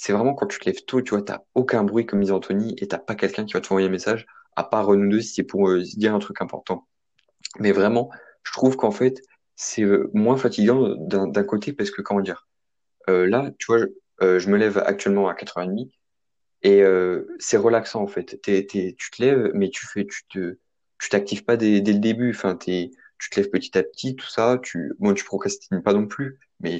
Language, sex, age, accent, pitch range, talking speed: French, male, 20-39, French, 100-120 Hz, 245 wpm